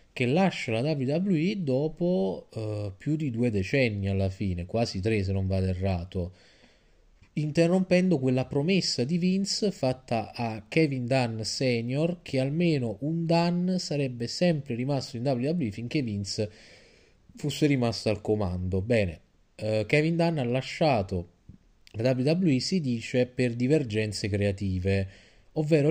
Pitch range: 100-140 Hz